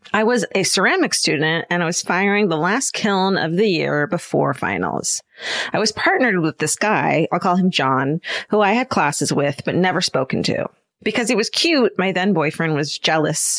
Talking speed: 195 wpm